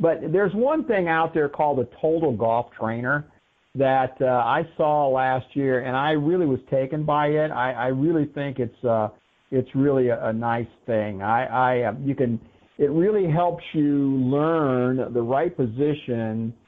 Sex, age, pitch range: male, 50-69, 120-145 Hz